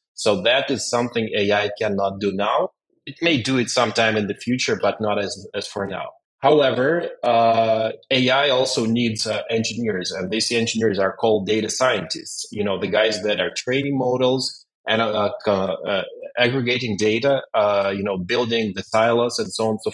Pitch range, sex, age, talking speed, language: 105-125 Hz, male, 30-49, 185 wpm, English